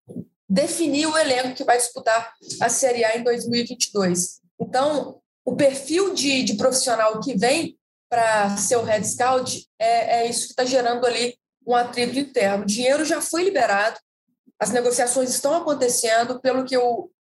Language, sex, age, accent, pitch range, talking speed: Portuguese, female, 20-39, Brazilian, 230-265 Hz, 160 wpm